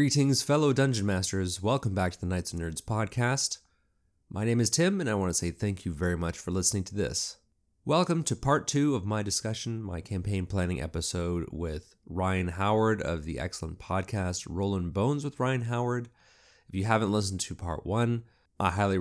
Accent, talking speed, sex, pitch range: American, 195 wpm, male, 90-115 Hz